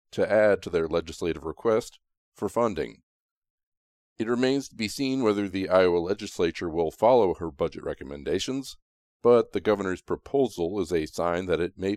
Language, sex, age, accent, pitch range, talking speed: English, male, 40-59, American, 90-110 Hz, 160 wpm